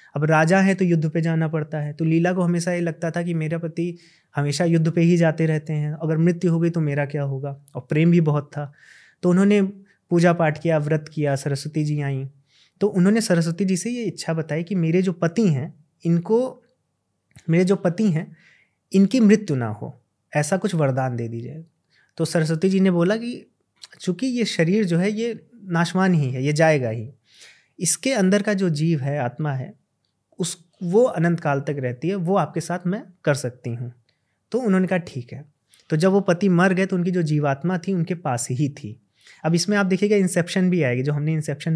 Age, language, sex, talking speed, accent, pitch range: 30-49, Hindi, male, 210 wpm, native, 150-185 Hz